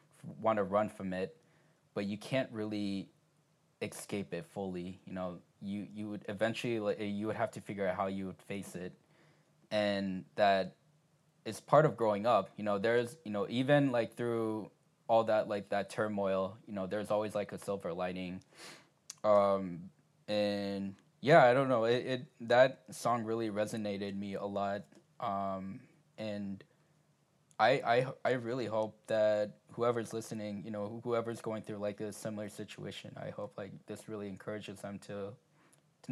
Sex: male